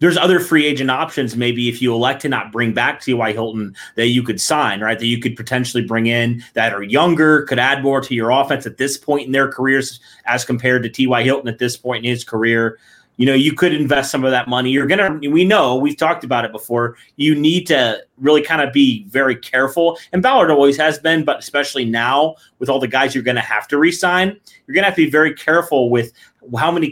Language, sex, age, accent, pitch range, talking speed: English, male, 30-49, American, 125-150 Hz, 245 wpm